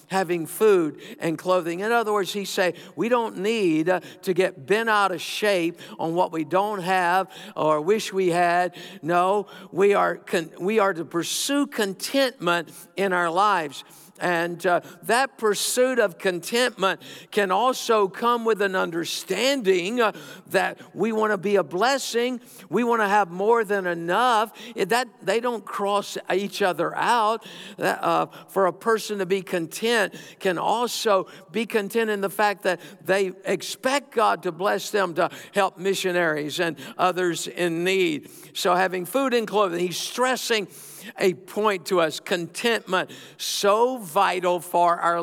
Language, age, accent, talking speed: English, 60-79, American, 155 wpm